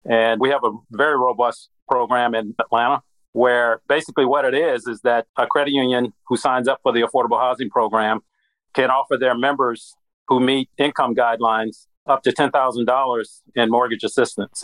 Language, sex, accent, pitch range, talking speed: English, male, American, 115-135 Hz, 170 wpm